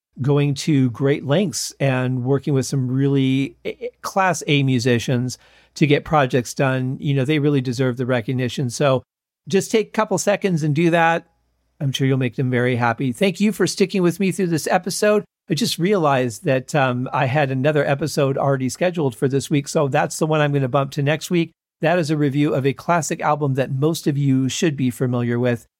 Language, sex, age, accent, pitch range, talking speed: English, male, 50-69, American, 130-175 Hz, 205 wpm